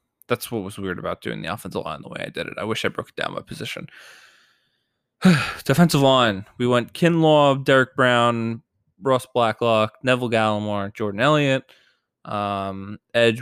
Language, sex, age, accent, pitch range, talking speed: English, male, 20-39, American, 105-120 Hz, 165 wpm